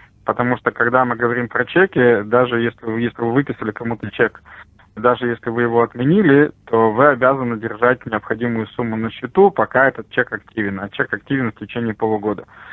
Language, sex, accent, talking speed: Russian, male, native, 175 wpm